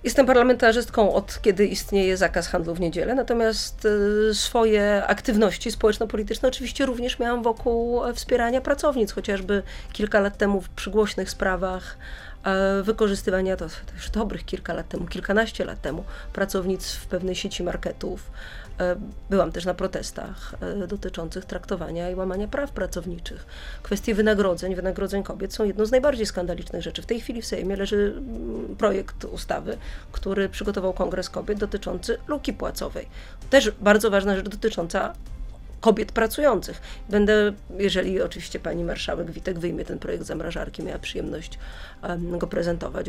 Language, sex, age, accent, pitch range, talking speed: Polish, female, 30-49, native, 180-220 Hz, 135 wpm